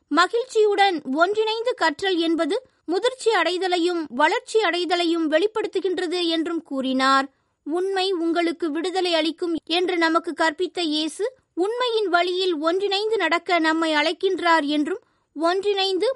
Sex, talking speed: female, 100 wpm